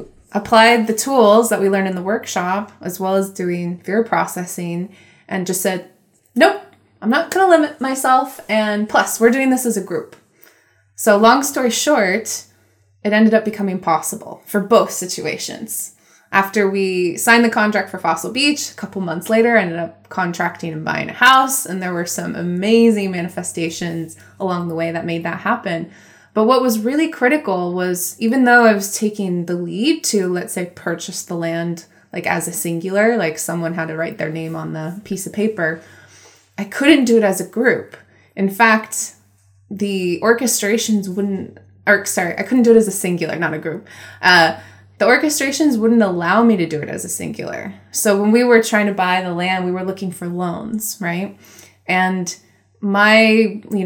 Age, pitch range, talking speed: 20-39, 175-225 Hz, 185 wpm